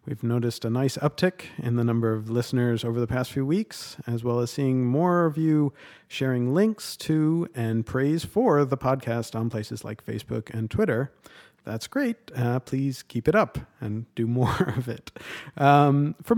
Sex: male